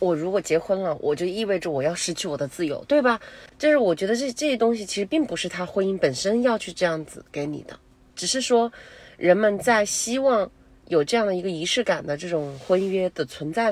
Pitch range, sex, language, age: 165-230 Hz, female, Chinese, 30-49